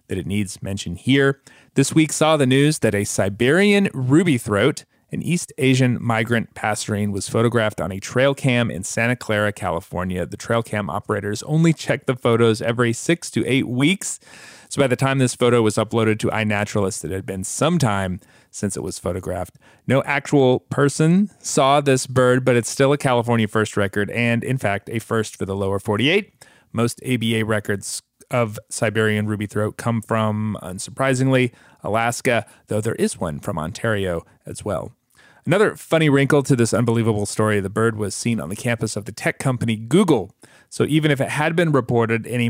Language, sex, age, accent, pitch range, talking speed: English, male, 30-49, American, 105-135 Hz, 185 wpm